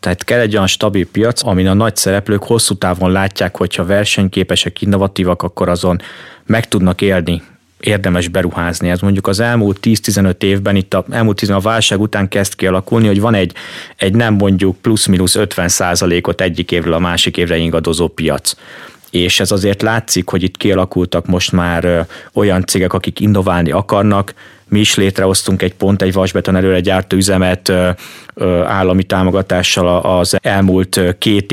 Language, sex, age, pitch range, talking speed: Hungarian, male, 30-49, 90-105 Hz, 155 wpm